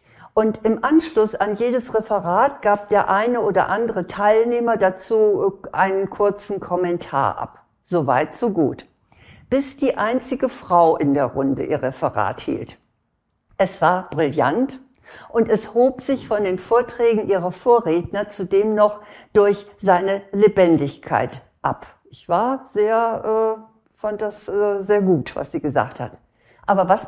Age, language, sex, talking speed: 60-79, German, female, 140 wpm